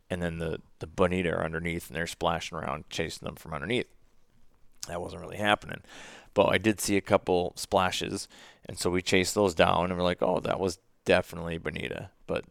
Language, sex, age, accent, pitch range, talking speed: English, male, 30-49, American, 90-115 Hz, 195 wpm